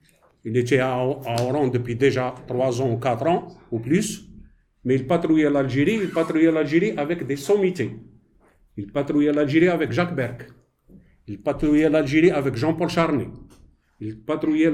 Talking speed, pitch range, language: 150 wpm, 130-165 Hz, English